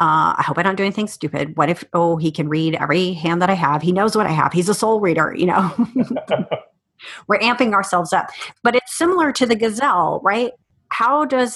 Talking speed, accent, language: 225 wpm, American, English